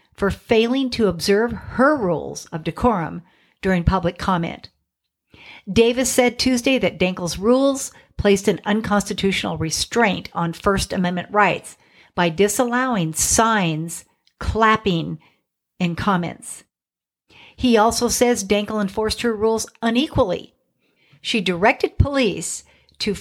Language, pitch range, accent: English, 180-240 Hz, American